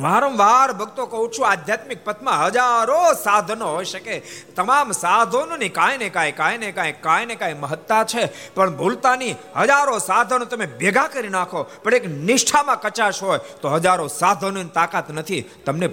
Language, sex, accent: Gujarati, male, native